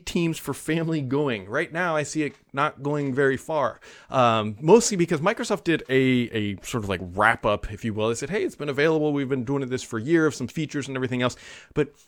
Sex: male